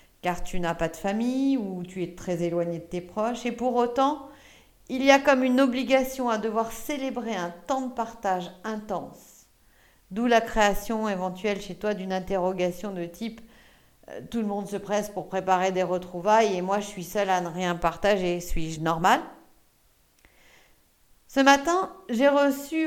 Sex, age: female, 50-69